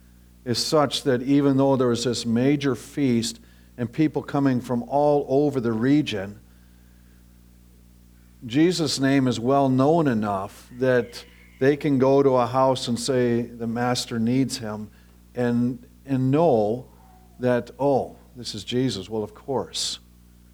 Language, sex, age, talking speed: English, male, 50-69, 140 wpm